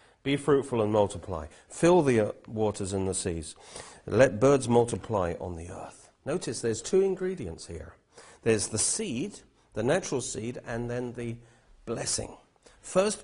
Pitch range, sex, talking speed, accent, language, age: 100-140 Hz, male, 145 wpm, British, English, 40-59